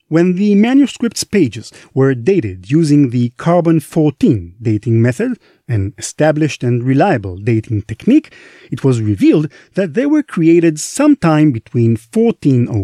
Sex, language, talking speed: male, English, 125 wpm